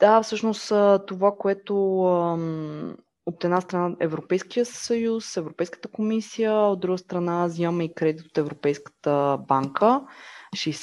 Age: 20-39